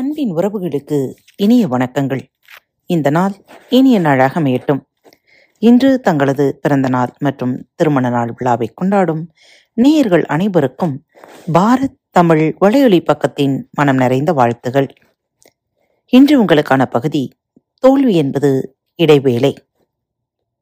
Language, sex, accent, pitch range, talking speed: Tamil, female, native, 140-225 Hz, 85 wpm